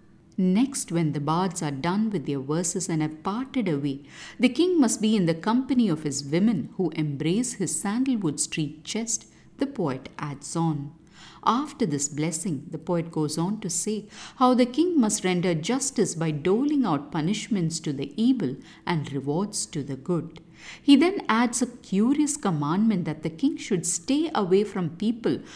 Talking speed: 175 wpm